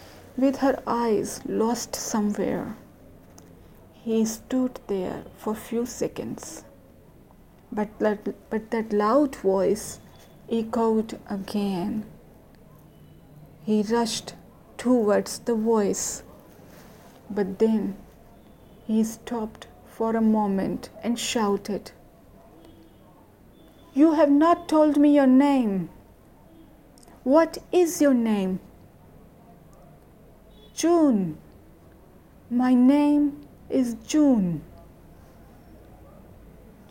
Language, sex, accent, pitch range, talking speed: Hindi, female, native, 205-245 Hz, 80 wpm